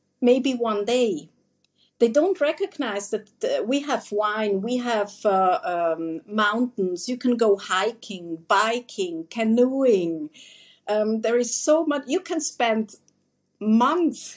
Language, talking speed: English, 125 wpm